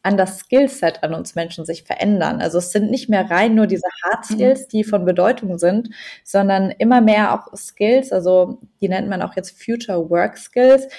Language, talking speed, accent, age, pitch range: German, 195 wpm, German, 20-39, 185-215 Hz